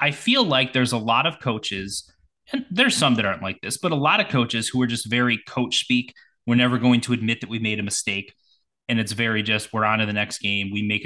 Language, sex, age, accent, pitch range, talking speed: English, male, 20-39, American, 105-130 Hz, 260 wpm